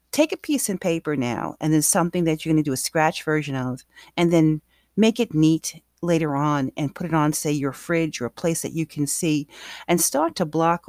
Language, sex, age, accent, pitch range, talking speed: English, female, 40-59, American, 150-175 Hz, 235 wpm